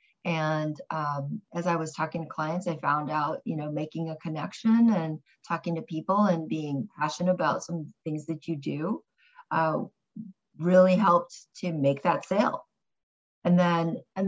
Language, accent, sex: English, American, female